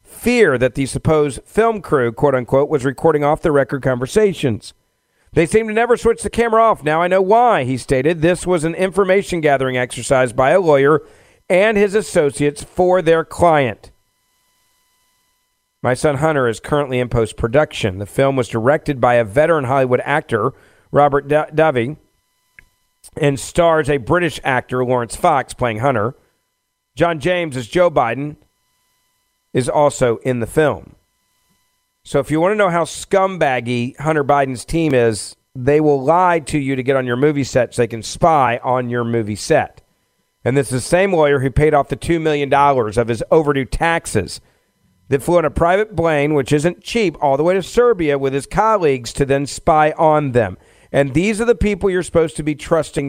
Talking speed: 180 wpm